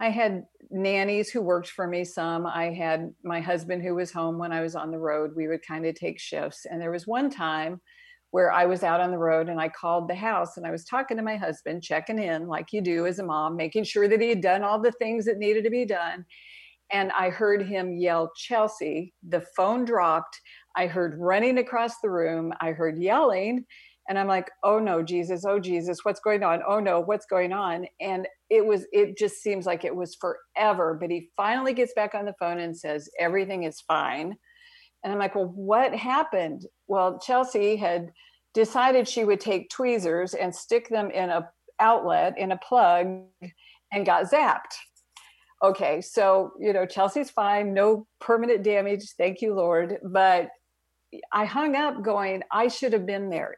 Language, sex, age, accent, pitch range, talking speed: English, female, 50-69, American, 175-220 Hz, 200 wpm